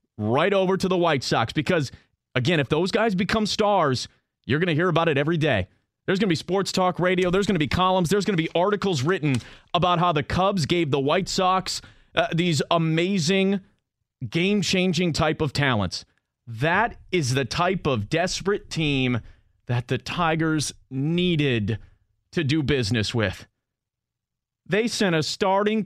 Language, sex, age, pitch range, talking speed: English, male, 30-49, 135-185 Hz, 170 wpm